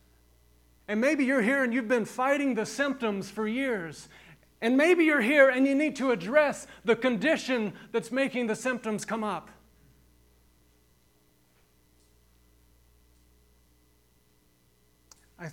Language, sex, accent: English, male, American